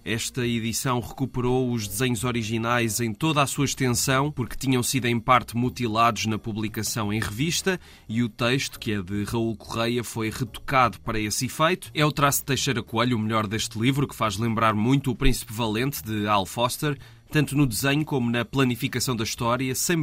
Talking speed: 190 wpm